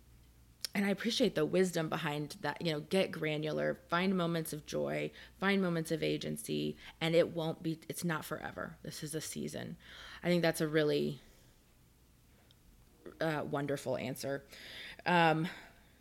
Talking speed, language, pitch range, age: 145 wpm, English, 150-190 Hz, 20-39